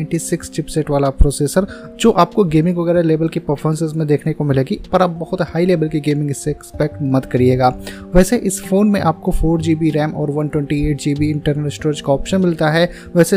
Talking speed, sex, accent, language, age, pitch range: 60 wpm, male, native, Hindi, 20-39, 145-175 Hz